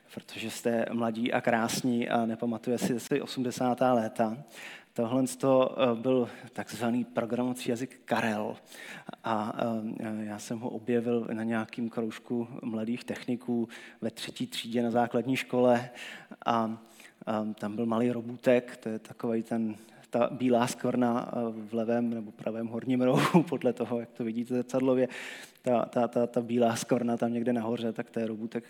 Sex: male